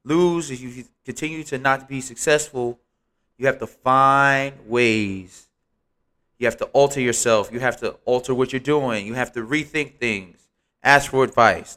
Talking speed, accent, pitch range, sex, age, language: 170 wpm, American, 110-135 Hz, male, 20-39, English